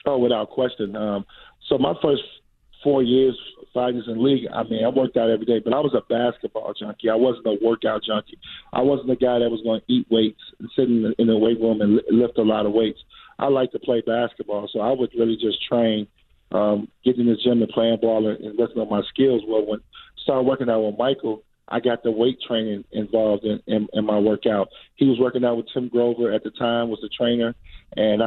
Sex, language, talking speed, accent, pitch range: male, English, 245 wpm, American, 110-120 Hz